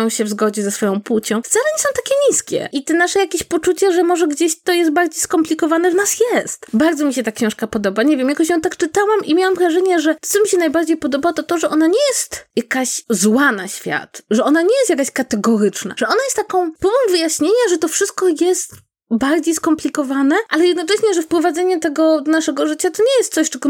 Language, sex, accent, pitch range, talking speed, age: Polish, female, native, 255-350 Hz, 225 wpm, 20-39